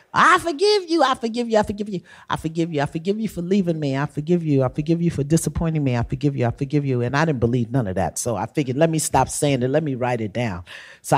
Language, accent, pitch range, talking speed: English, American, 115-160 Hz, 290 wpm